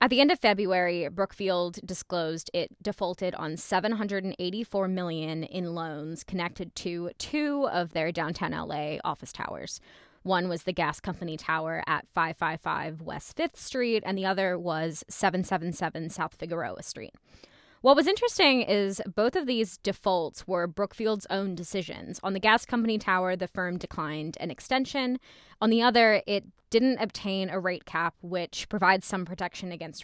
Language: English